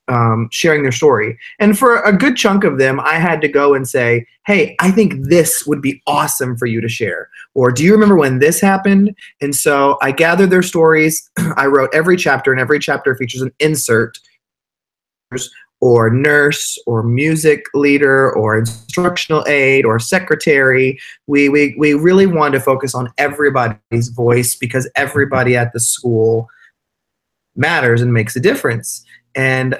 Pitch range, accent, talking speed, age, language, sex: 130-175 Hz, American, 165 wpm, 30-49, English, male